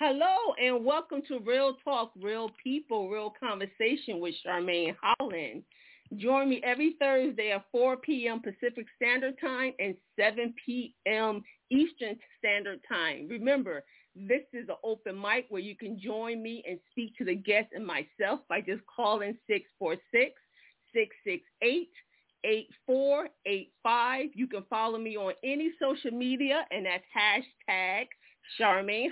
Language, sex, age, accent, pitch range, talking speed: English, female, 40-59, American, 210-270 Hz, 130 wpm